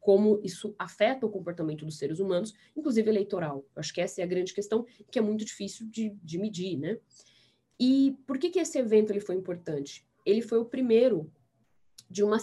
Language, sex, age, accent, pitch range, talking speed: Portuguese, female, 20-39, Brazilian, 160-215 Hz, 190 wpm